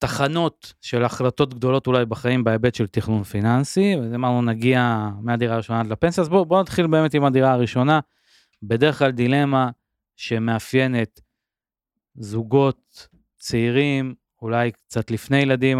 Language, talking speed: Hebrew, 135 wpm